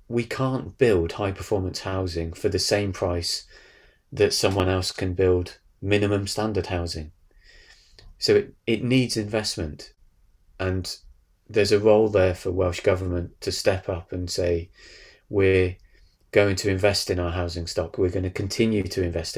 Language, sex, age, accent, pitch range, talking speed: English, male, 30-49, British, 90-105 Hz, 155 wpm